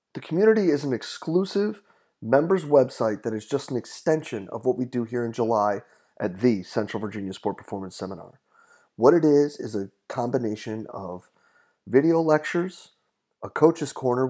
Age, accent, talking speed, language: 30-49, American, 160 wpm, English